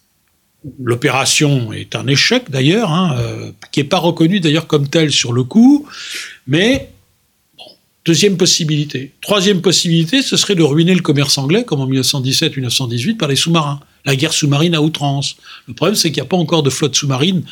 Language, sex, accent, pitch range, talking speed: French, male, French, 135-195 Hz, 180 wpm